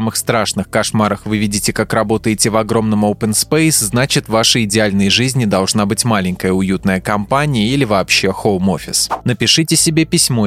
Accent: native